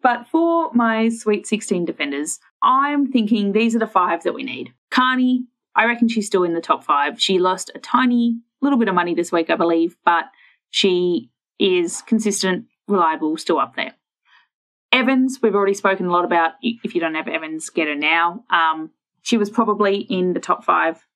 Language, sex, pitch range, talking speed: English, female, 175-245 Hz, 190 wpm